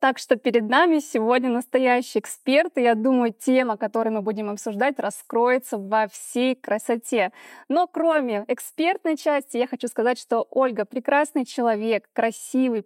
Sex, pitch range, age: female, 225-280 Hz, 20-39